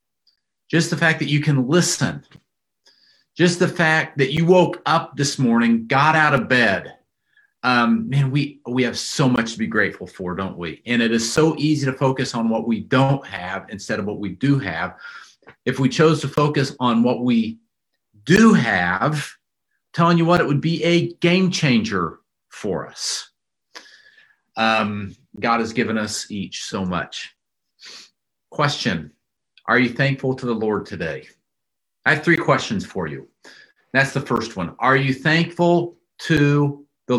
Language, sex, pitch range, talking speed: English, male, 115-160 Hz, 165 wpm